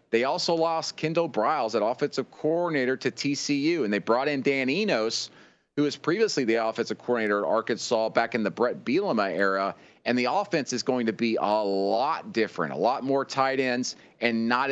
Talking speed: 190 wpm